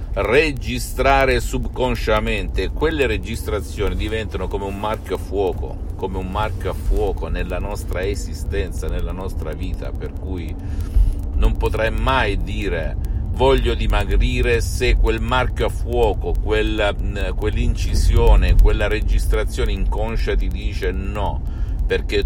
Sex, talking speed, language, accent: male, 115 wpm, Italian, native